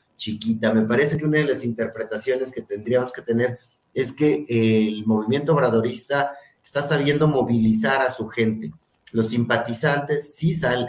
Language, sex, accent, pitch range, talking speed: Spanish, male, Mexican, 115-135 Hz, 155 wpm